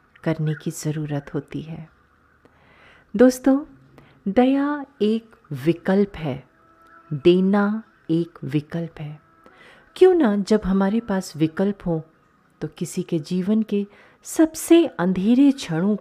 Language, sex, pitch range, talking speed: Hindi, female, 150-210 Hz, 110 wpm